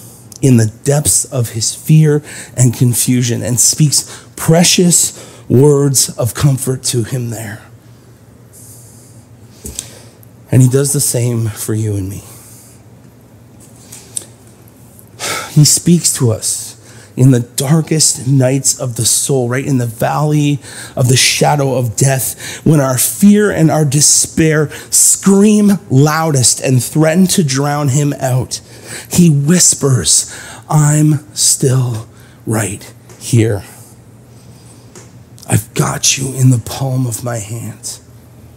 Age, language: 30-49, English